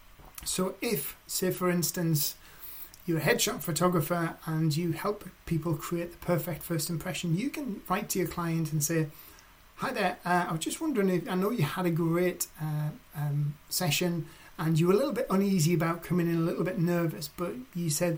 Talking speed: 200 wpm